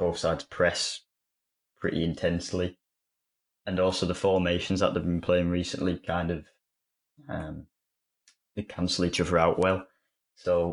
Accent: British